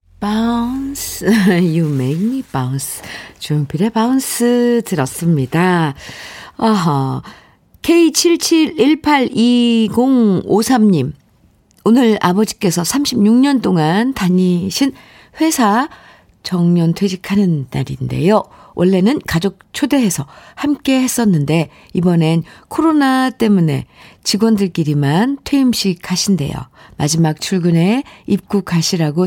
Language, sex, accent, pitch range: Korean, female, native, 150-225 Hz